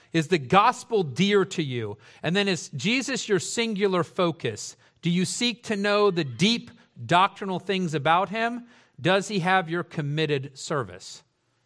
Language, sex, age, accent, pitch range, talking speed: English, male, 40-59, American, 130-185 Hz, 155 wpm